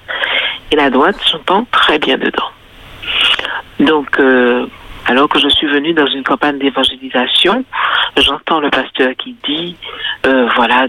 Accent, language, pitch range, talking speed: French, French, 130-215 Hz, 140 wpm